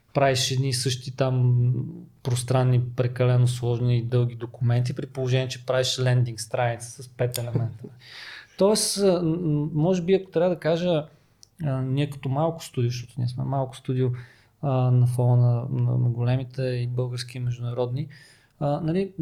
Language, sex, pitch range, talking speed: Bulgarian, male, 125-150 Hz, 135 wpm